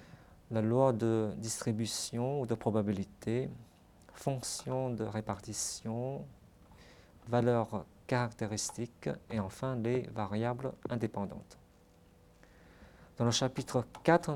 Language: French